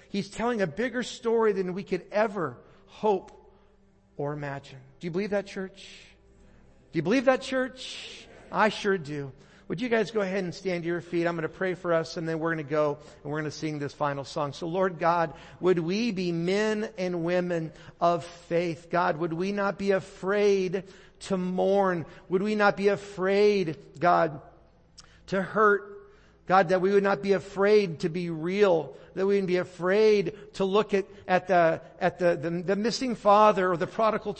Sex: male